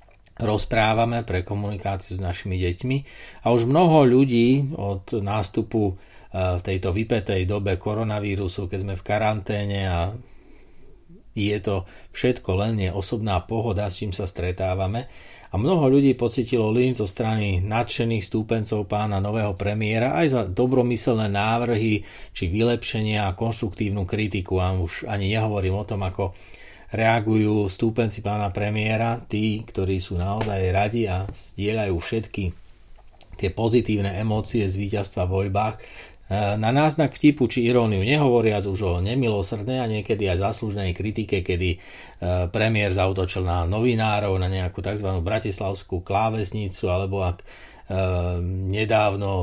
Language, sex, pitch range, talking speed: Slovak, male, 95-110 Hz, 130 wpm